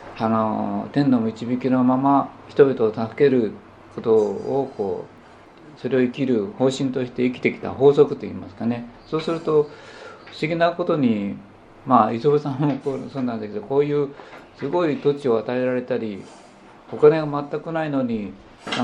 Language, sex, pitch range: Japanese, male, 115-145 Hz